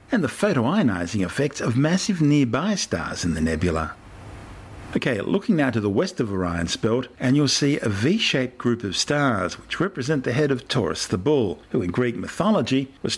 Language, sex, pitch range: English, male, 100-135 Hz